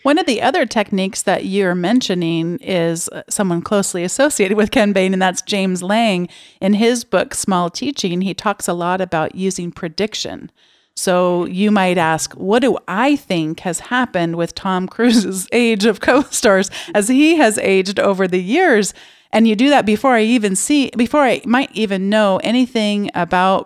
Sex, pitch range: female, 190-255 Hz